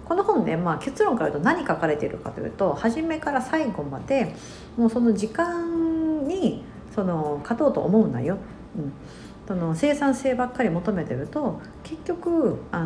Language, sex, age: Japanese, female, 50-69